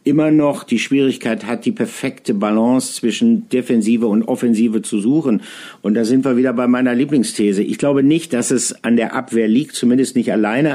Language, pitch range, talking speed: German, 115-135 Hz, 190 wpm